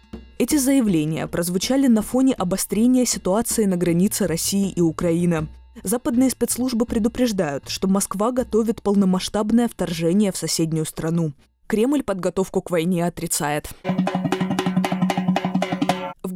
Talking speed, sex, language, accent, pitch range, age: 105 wpm, female, Russian, native, 170-230 Hz, 20-39